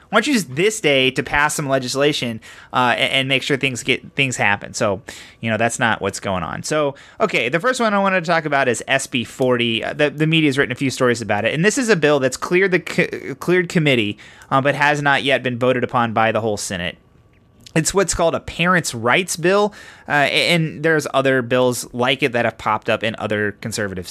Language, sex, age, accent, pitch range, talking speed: English, male, 30-49, American, 125-170 Hz, 230 wpm